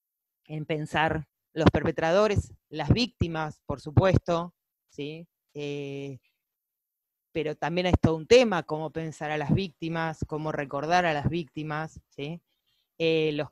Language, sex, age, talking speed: Spanish, female, 20-39, 120 wpm